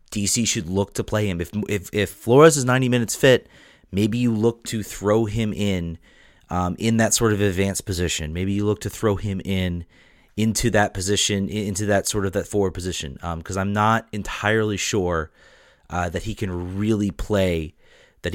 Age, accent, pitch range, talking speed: 30-49, American, 95-115 Hz, 190 wpm